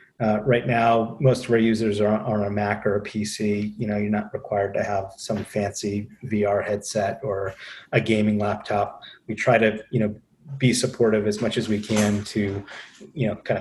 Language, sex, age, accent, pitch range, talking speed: English, male, 30-49, American, 105-120 Hz, 200 wpm